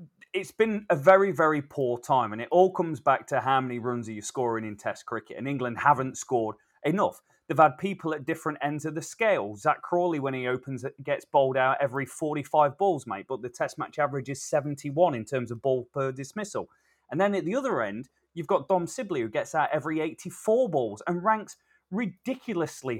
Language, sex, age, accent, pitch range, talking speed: English, male, 30-49, British, 130-170 Hz, 210 wpm